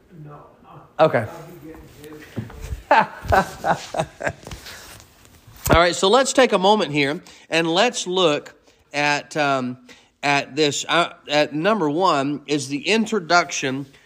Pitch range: 150-195 Hz